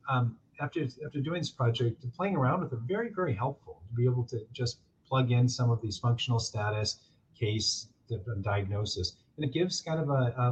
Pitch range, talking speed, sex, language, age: 100-125 Hz, 195 wpm, male, English, 40-59